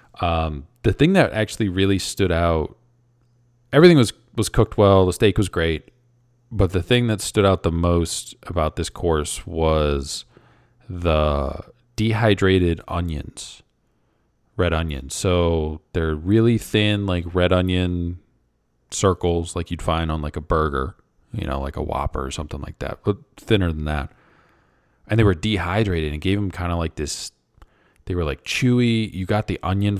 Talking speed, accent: 160 wpm, American